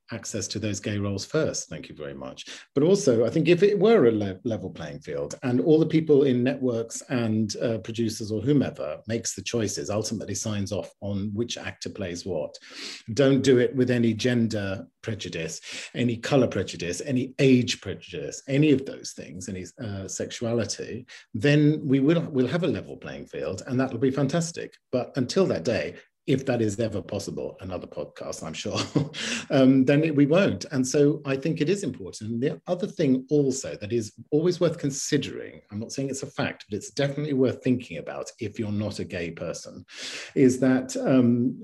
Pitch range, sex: 110-135 Hz, male